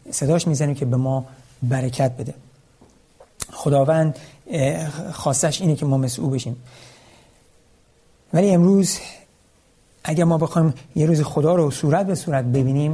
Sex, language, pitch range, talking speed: male, Persian, 135-175 Hz, 125 wpm